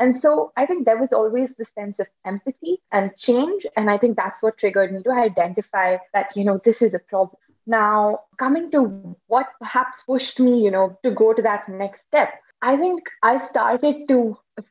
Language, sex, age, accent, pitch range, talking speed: English, female, 20-39, Indian, 200-240 Hz, 205 wpm